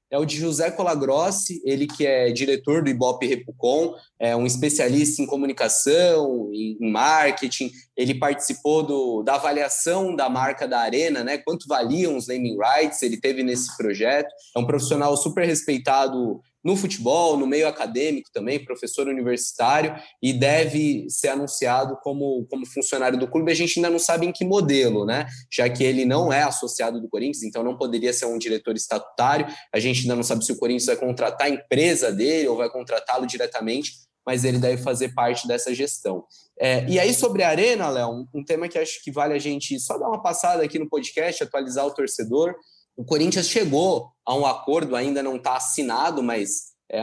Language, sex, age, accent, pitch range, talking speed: Portuguese, male, 20-39, Brazilian, 130-165 Hz, 185 wpm